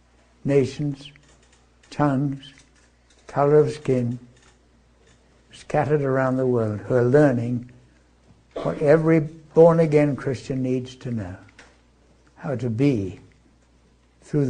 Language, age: English, 60-79